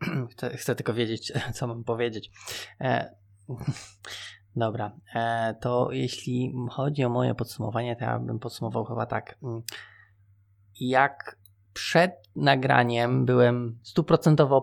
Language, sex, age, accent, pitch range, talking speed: Polish, male, 20-39, native, 100-135 Hz, 105 wpm